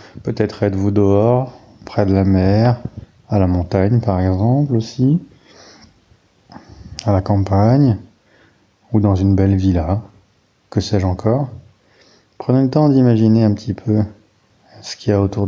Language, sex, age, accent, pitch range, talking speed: English, male, 30-49, French, 100-120 Hz, 140 wpm